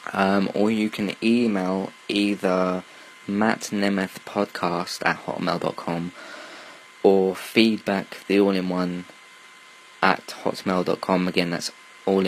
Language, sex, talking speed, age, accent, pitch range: English, male, 105 wpm, 20-39, British, 95-115 Hz